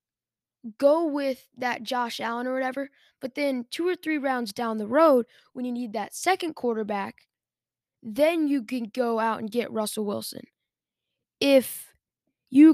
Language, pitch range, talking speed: English, 225-275 Hz, 155 wpm